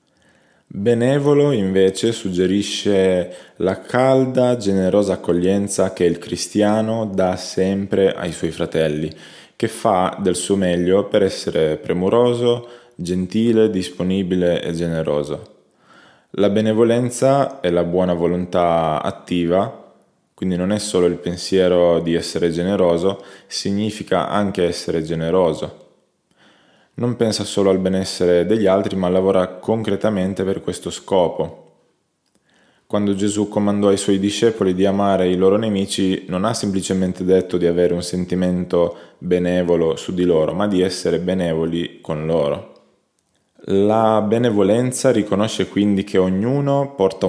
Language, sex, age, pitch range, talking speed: Italian, male, 20-39, 90-105 Hz, 120 wpm